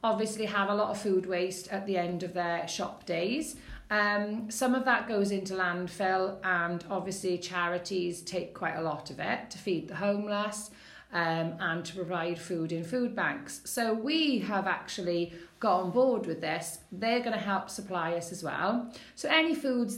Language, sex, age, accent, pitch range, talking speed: English, female, 40-59, British, 175-220 Hz, 185 wpm